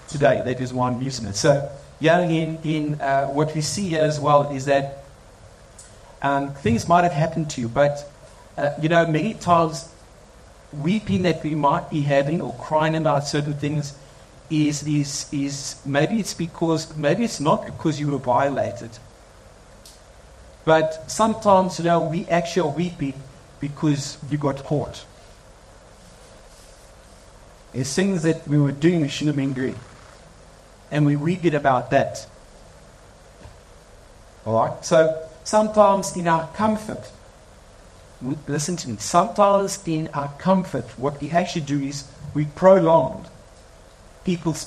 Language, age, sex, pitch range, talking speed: English, 60-79, male, 130-165 Hz, 145 wpm